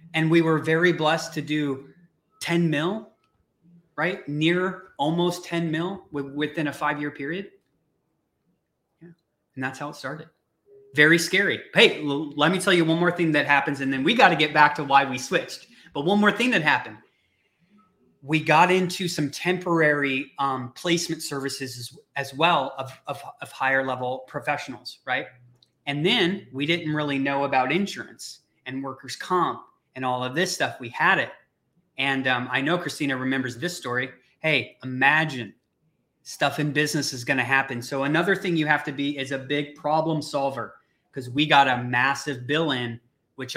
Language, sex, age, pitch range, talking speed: English, male, 30-49, 135-170 Hz, 170 wpm